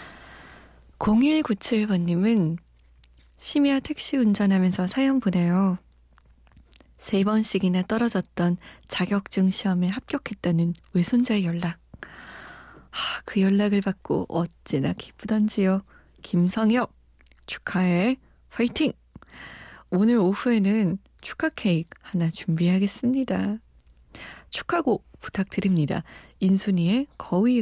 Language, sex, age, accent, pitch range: Korean, female, 20-39, native, 170-220 Hz